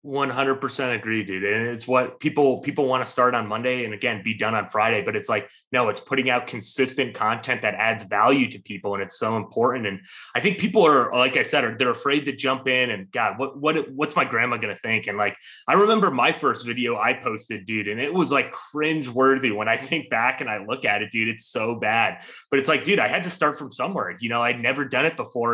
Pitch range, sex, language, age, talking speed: 115-140 Hz, male, English, 30-49, 255 wpm